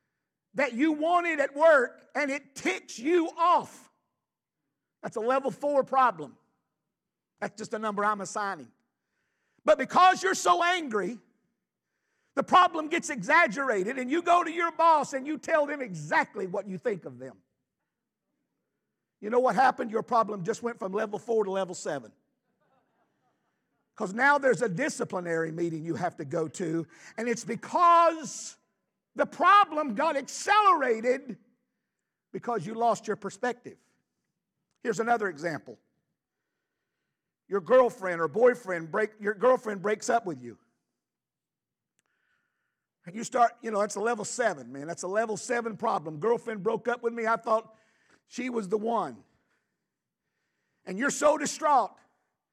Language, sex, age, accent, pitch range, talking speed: English, male, 50-69, American, 205-305 Hz, 145 wpm